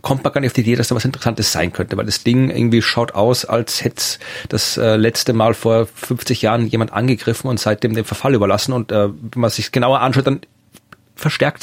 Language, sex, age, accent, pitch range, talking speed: German, male, 30-49, German, 115-140 Hz, 230 wpm